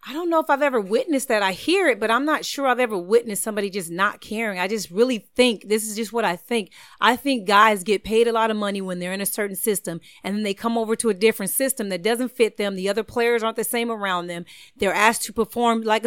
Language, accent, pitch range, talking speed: English, American, 205-250 Hz, 275 wpm